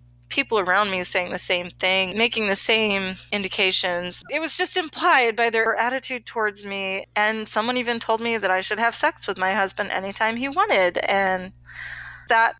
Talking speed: 180 wpm